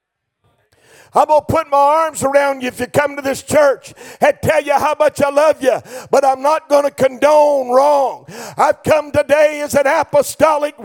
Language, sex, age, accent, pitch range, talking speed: English, male, 50-69, American, 275-315 Hz, 195 wpm